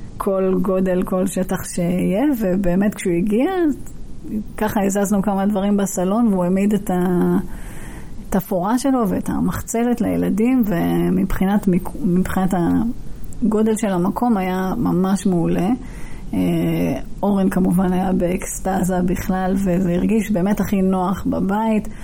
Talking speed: 105 wpm